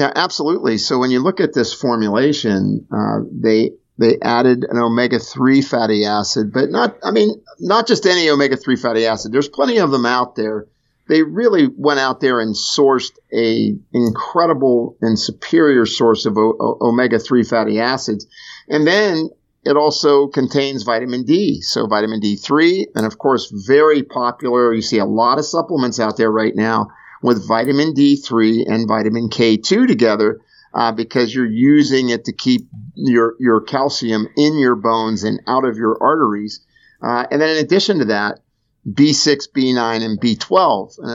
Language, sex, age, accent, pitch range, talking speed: English, male, 50-69, American, 110-140 Hz, 165 wpm